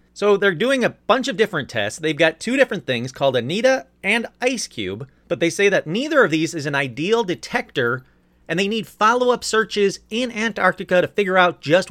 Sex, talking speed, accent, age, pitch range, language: male, 200 wpm, American, 30-49, 135-210 Hz, English